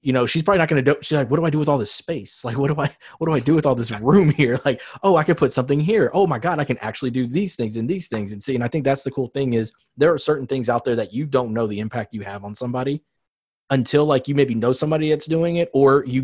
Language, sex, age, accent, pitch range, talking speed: English, male, 20-39, American, 120-145 Hz, 320 wpm